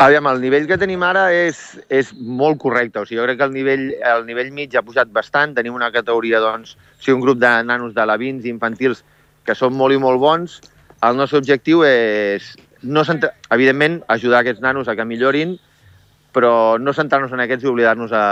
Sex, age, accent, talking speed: male, 30-49, Spanish, 200 wpm